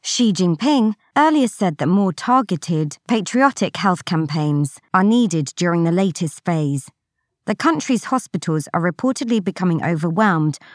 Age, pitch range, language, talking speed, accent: 20-39, 155-235 Hz, English, 130 wpm, British